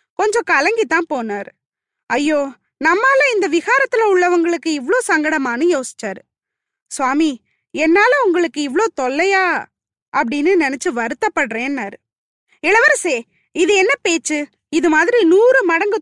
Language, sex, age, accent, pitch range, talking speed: Tamil, female, 20-39, native, 285-395 Hz, 100 wpm